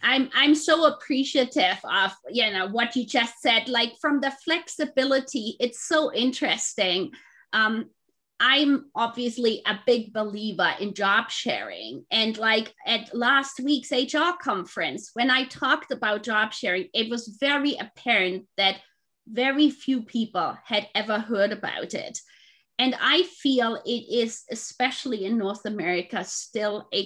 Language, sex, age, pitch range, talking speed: English, female, 30-49, 210-270 Hz, 140 wpm